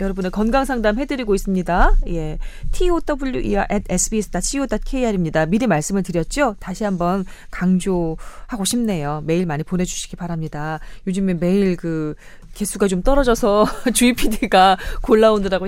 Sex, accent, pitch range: female, native, 175-250 Hz